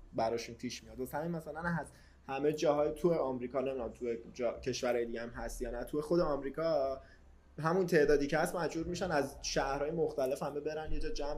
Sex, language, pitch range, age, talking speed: male, Persian, 130-165 Hz, 20-39, 195 wpm